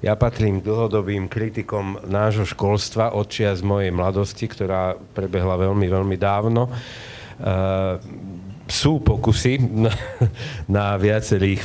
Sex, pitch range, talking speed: male, 100-115 Hz, 110 wpm